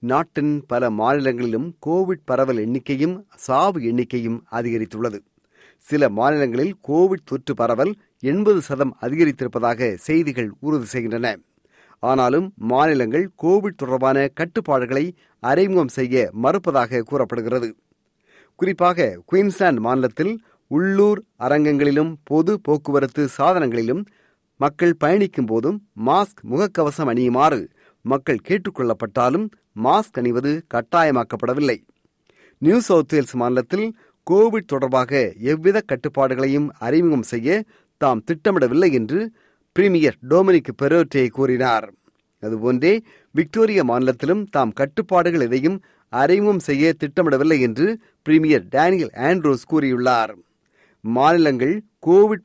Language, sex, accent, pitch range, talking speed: Tamil, male, native, 130-185 Hz, 90 wpm